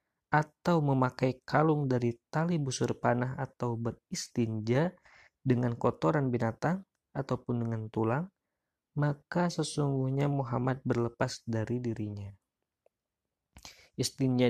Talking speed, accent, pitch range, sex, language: 90 wpm, native, 120-145 Hz, male, Indonesian